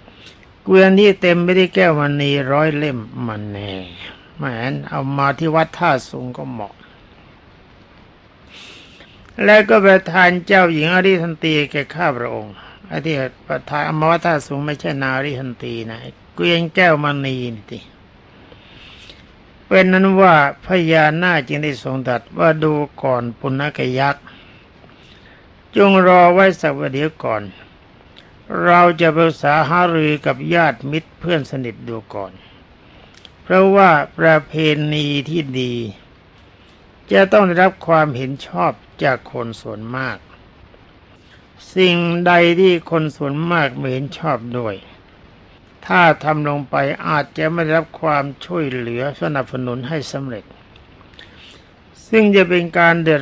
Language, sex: Thai, male